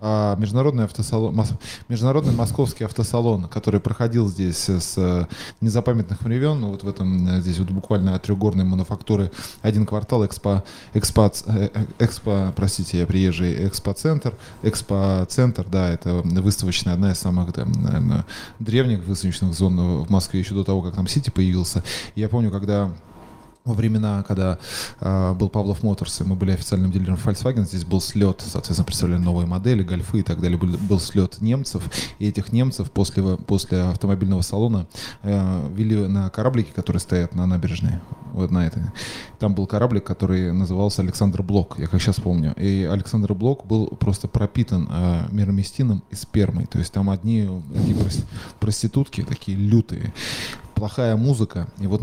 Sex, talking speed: male, 150 wpm